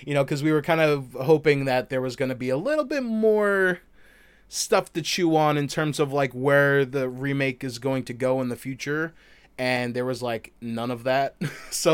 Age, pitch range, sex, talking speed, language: 20-39, 125-150 Hz, male, 220 wpm, English